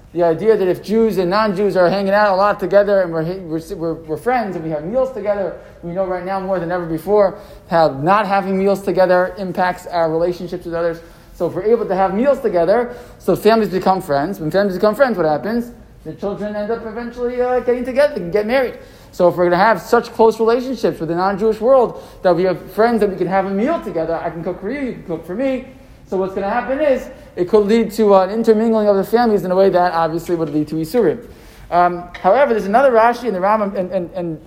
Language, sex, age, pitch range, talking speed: English, male, 20-39, 175-220 Hz, 240 wpm